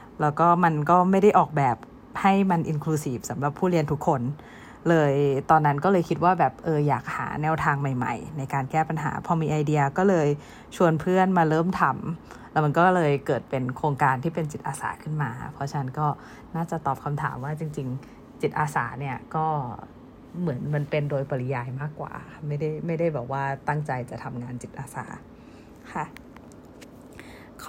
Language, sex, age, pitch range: Thai, female, 20-39, 140-185 Hz